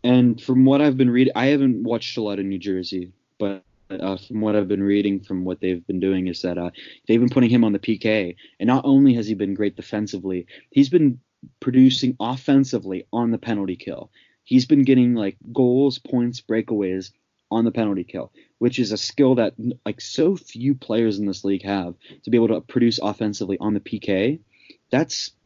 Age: 20-39